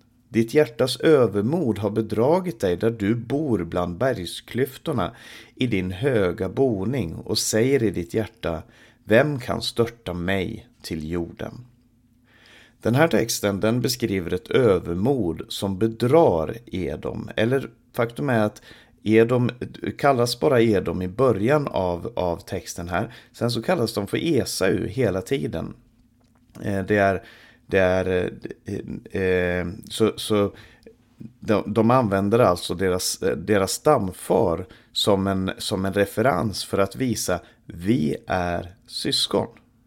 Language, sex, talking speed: Swedish, male, 120 wpm